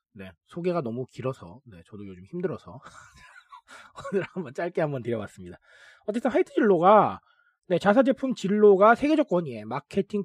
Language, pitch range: Korean, 155-220 Hz